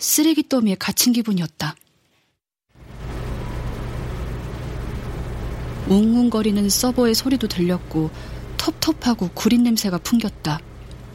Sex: female